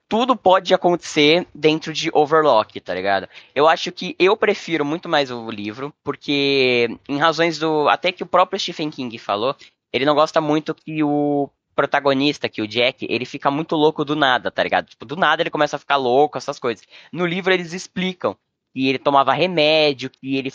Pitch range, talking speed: 135-165 Hz, 195 wpm